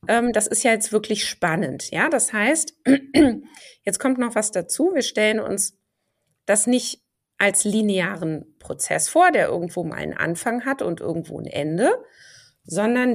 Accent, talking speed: German, 155 wpm